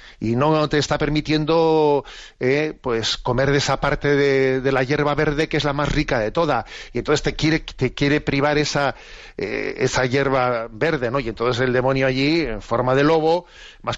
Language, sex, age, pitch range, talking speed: Spanish, male, 40-59, 125-155 Hz, 200 wpm